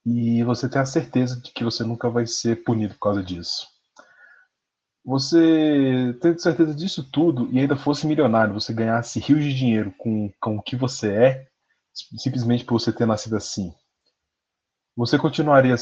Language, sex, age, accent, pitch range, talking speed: Portuguese, male, 20-39, Brazilian, 100-135 Hz, 165 wpm